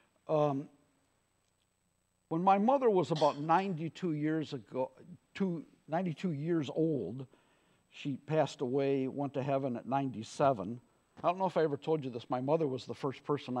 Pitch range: 130-175 Hz